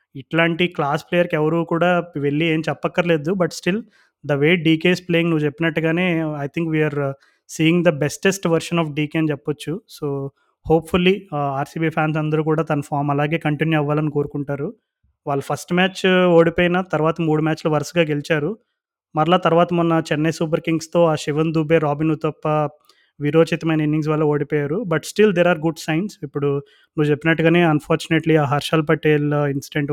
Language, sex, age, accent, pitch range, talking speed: Telugu, male, 20-39, native, 145-165 Hz, 150 wpm